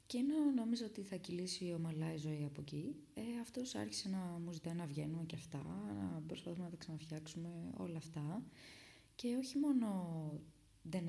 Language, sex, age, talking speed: Greek, female, 20-39, 175 wpm